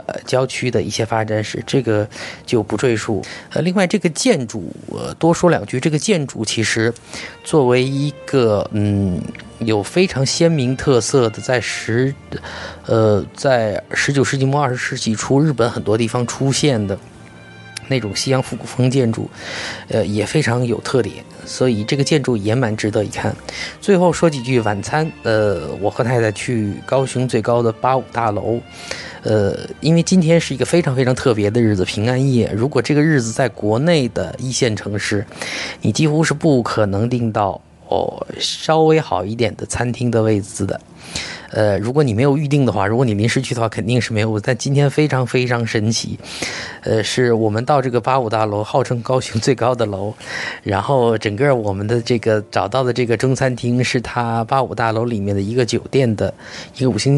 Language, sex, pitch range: Chinese, male, 110-130 Hz